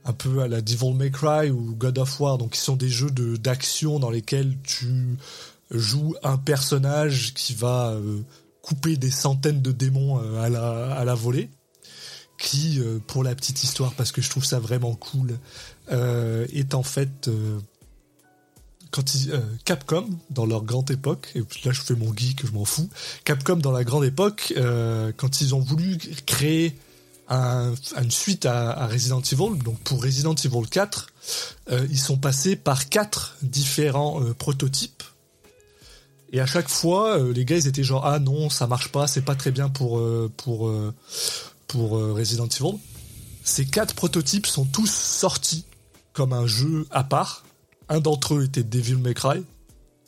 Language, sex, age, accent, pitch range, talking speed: French, male, 20-39, French, 120-145 Hz, 175 wpm